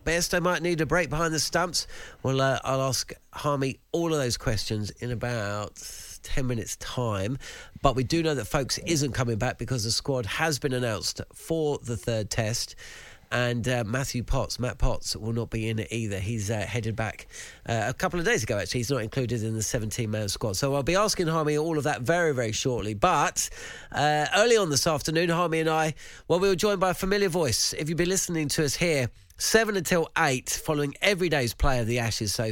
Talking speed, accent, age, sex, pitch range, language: 220 wpm, British, 40-59, male, 115-160 Hz, English